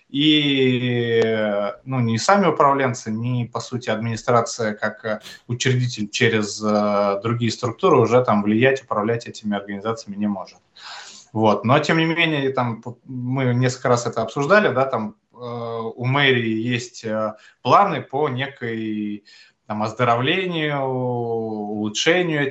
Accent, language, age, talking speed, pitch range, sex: native, Russian, 20-39, 100 wpm, 110-135 Hz, male